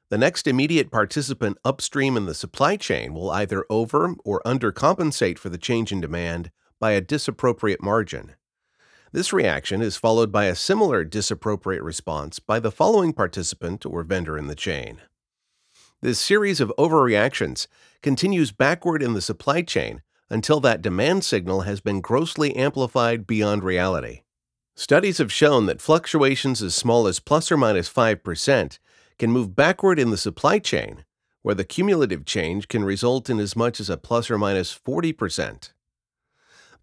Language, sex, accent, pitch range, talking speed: English, male, American, 100-135 Hz, 155 wpm